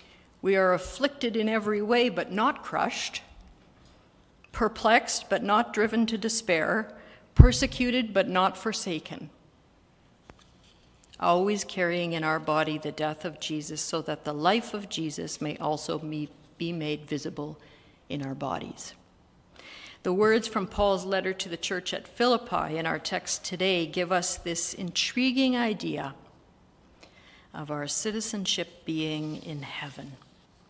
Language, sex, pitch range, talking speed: English, female, 155-205 Hz, 130 wpm